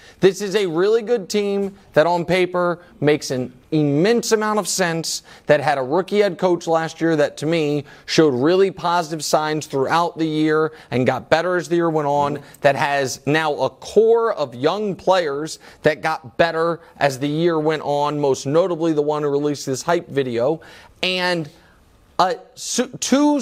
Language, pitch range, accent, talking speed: English, 155-210 Hz, American, 175 wpm